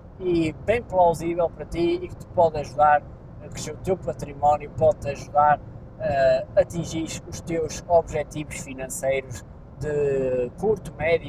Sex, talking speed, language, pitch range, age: male, 140 wpm, Portuguese, 145-185 Hz, 20-39